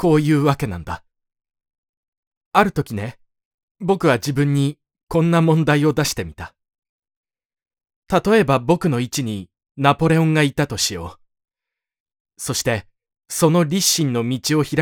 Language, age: Japanese, 20-39